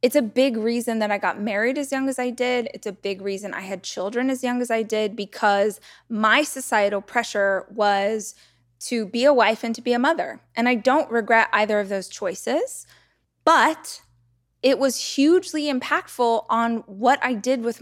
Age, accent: 20-39, American